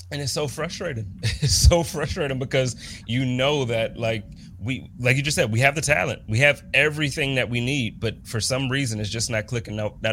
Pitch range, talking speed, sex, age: 105-135 Hz, 225 wpm, male, 30-49